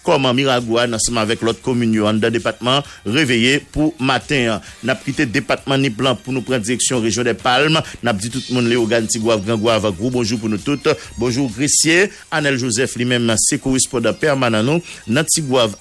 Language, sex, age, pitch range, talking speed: English, male, 50-69, 115-135 Hz, 195 wpm